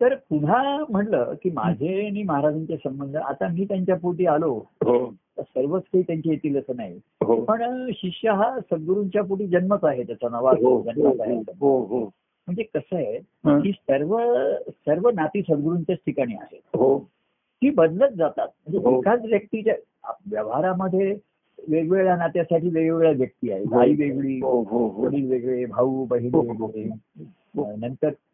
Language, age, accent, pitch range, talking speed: Marathi, 50-69, native, 140-210 Hz, 120 wpm